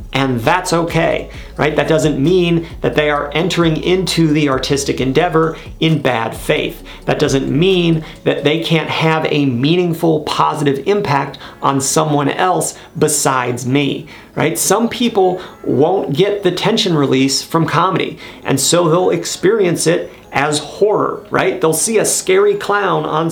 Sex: male